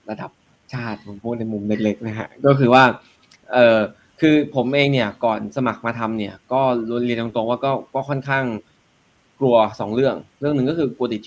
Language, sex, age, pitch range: Thai, male, 20-39, 110-130 Hz